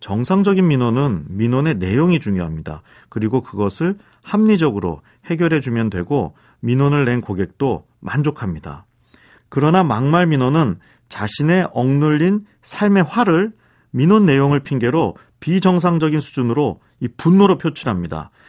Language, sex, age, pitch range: Korean, male, 40-59, 110-160 Hz